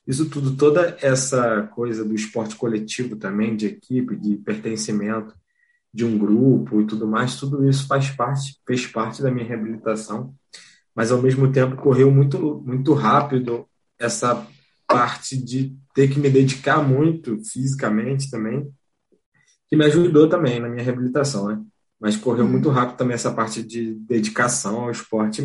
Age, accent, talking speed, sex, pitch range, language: 20-39, Brazilian, 150 wpm, male, 110-135 Hz, Portuguese